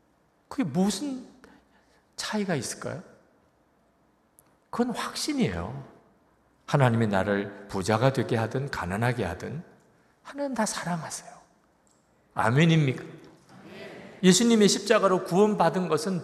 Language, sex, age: Korean, male, 50-69